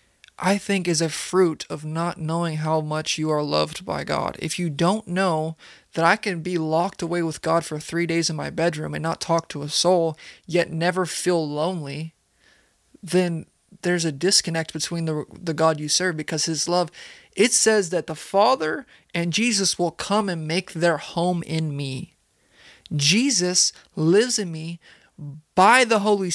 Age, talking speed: 20-39, 180 wpm